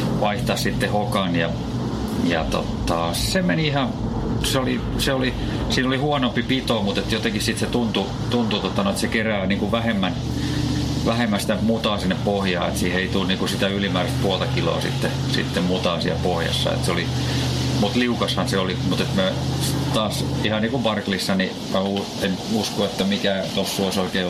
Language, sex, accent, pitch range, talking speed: Finnish, male, native, 95-115 Hz, 175 wpm